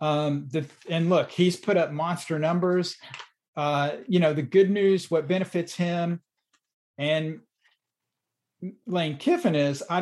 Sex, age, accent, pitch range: male, 40-59, American, 150-185 Hz